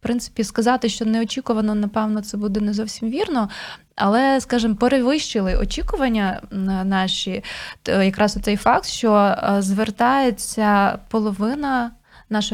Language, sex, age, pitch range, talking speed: Ukrainian, female, 20-39, 205-240 Hz, 110 wpm